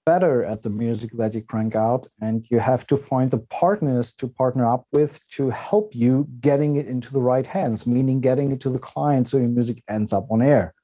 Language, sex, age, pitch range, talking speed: English, male, 40-59, 120-155 Hz, 225 wpm